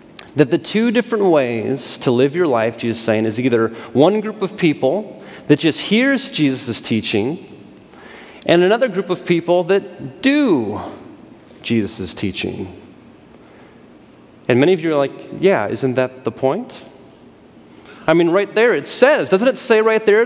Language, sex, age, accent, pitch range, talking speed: English, male, 30-49, American, 135-200 Hz, 160 wpm